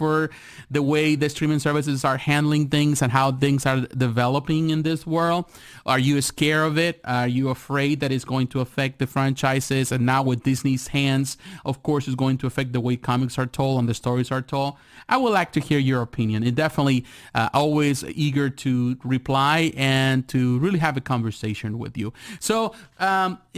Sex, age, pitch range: male, 30-49, 130-160 Hz